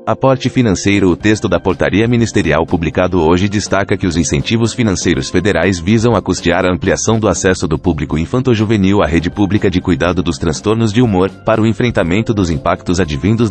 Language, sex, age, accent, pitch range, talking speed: Portuguese, male, 30-49, Brazilian, 85-110 Hz, 180 wpm